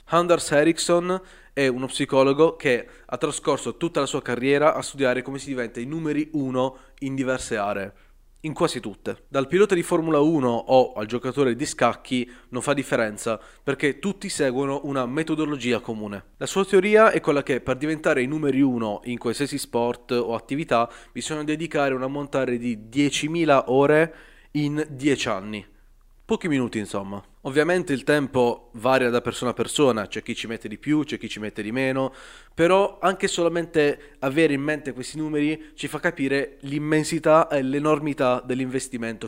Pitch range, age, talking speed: 125-160 Hz, 20-39, 170 wpm